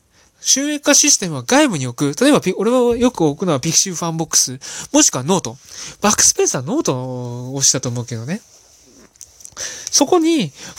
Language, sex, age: Japanese, male, 20-39